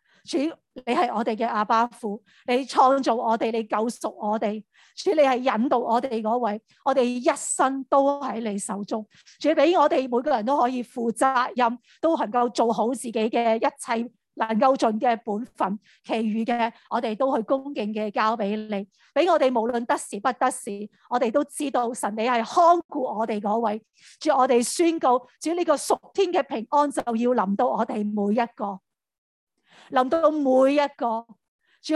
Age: 40-59